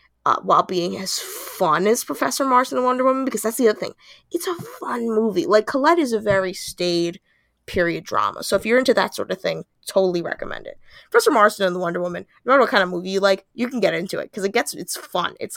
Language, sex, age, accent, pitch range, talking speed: English, female, 20-39, American, 180-240 Hz, 245 wpm